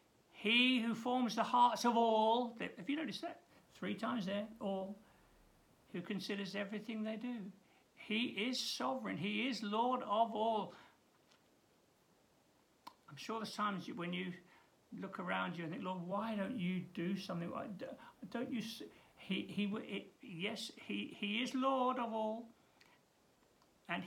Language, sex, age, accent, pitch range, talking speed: English, male, 60-79, British, 180-235 Hz, 145 wpm